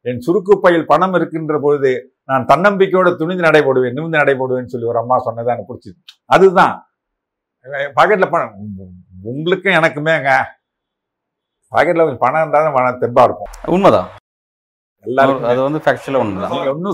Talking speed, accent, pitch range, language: 105 wpm, native, 135-175 Hz, Tamil